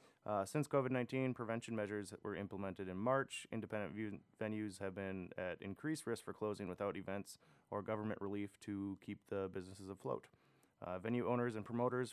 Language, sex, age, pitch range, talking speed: English, male, 30-49, 100-125 Hz, 170 wpm